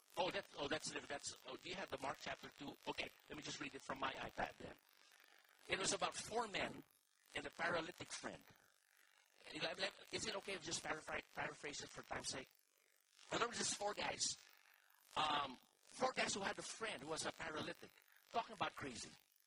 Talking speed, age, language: 195 wpm, 50-69, English